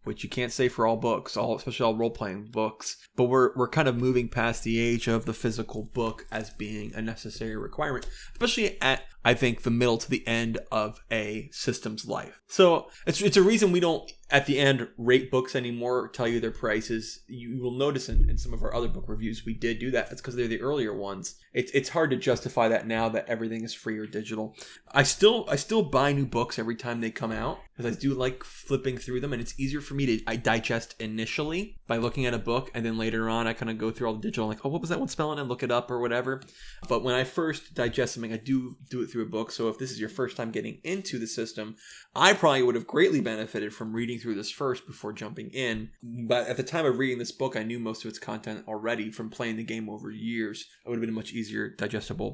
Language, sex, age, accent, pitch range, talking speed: English, male, 20-39, American, 110-130 Hz, 250 wpm